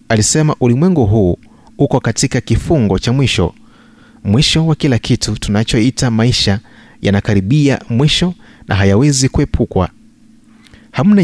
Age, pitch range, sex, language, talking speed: 30-49, 105-135 Hz, male, Swahili, 105 wpm